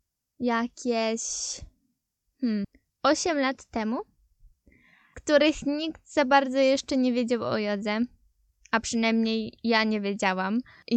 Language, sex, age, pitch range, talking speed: Polish, female, 10-29, 225-280 Hz, 110 wpm